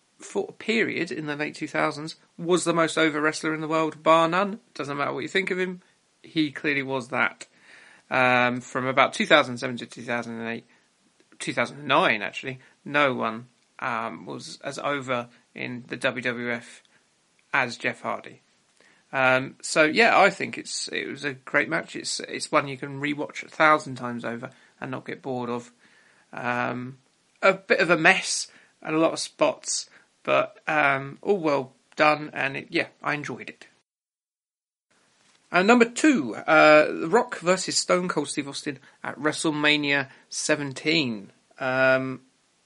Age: 40-59